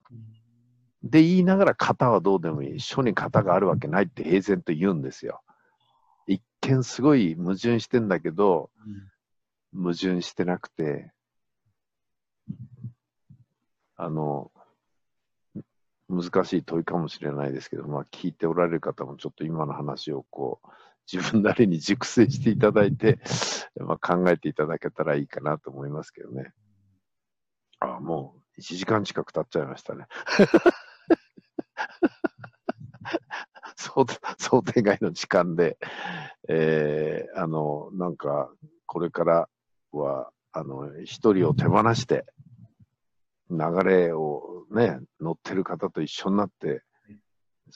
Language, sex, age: Japanese, male, 50-69